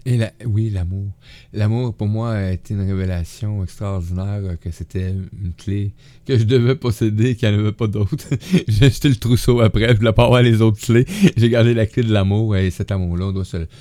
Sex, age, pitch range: male, 30-49, 95-120 Hz